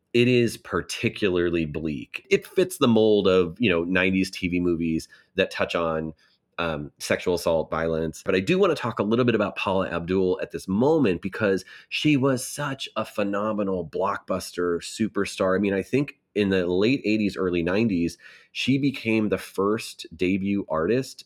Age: 30-49